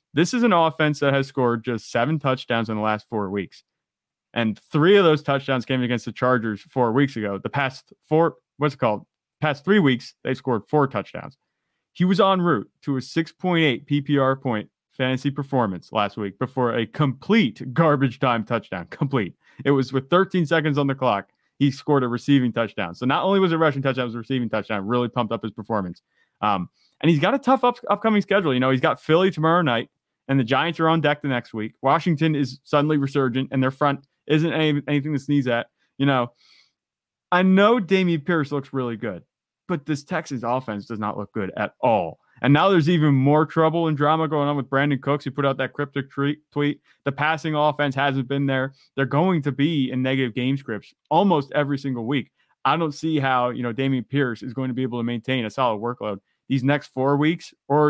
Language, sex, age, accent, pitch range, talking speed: English, male, 30-49, American, 125-155 Hz, 215 wpm